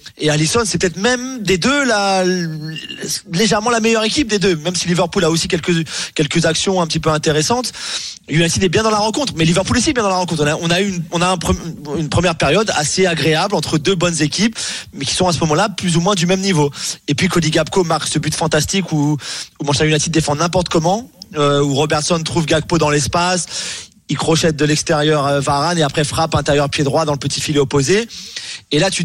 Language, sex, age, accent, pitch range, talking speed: French, male, 30-49, French, 150-185 Hz, 225 wpm